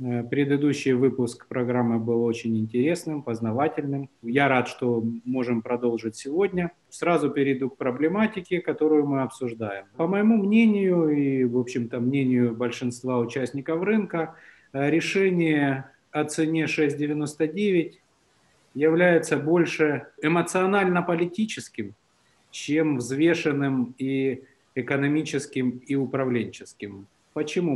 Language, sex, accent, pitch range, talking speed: Ukrainian, male, native, 125-160 Hz, 95 wpm